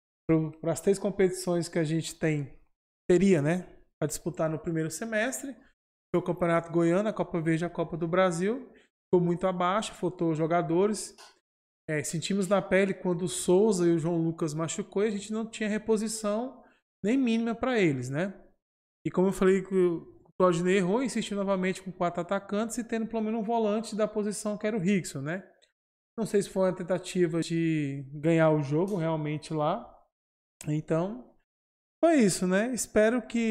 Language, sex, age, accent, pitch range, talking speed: Portuguese, male, 20-39, Brazilian, 160-205 Hz, 175 wpm